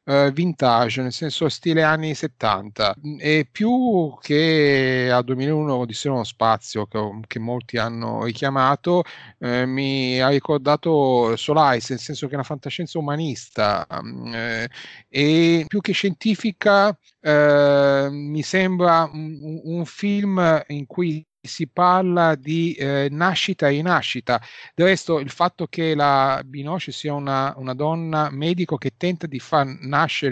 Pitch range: 135-165 Hz